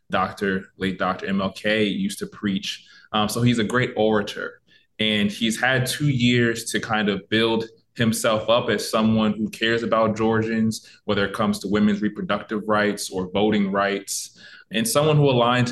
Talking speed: 170 wpm